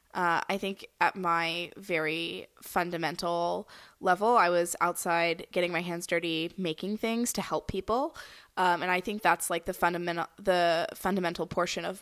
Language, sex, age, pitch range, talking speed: English, female, 20-39, 175-200 Hz, 160 wpm